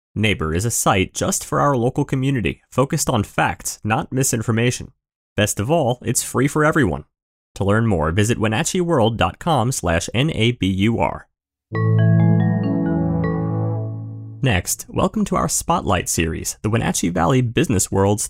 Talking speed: 125 wpm